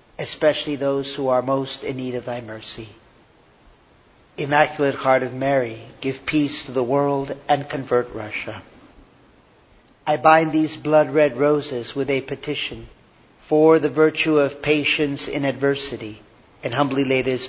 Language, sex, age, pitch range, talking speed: English, male, 50-69, 125-150 Hz, 140 wpm